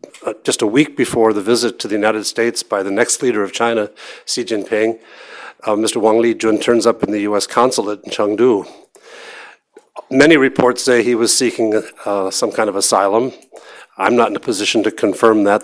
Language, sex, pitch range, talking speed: English, male, 105-125 Hz, 195 wpm